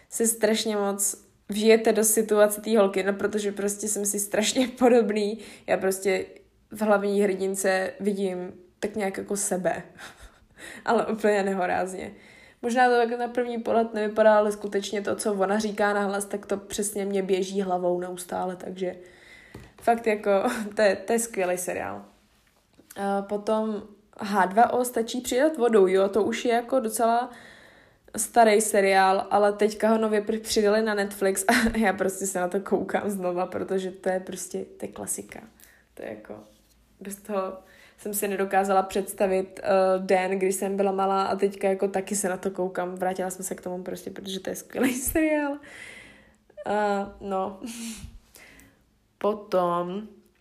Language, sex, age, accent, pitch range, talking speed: Czech, female, 10-29, native, 190-215 Hz, 155 wpm